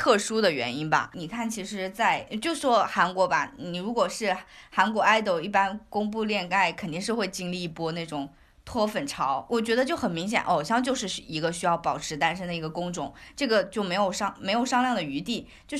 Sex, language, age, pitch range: female, Chinese, 20-39, 185-245 Hz